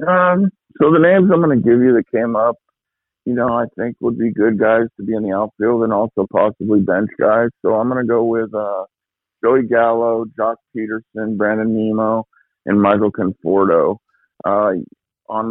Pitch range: 105-120 Hz